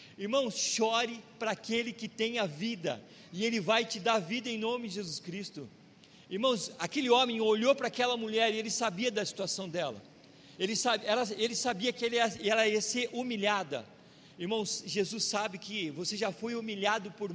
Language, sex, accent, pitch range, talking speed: Portuguese, male, Brazilian, 195-230 Hz, 165 wpm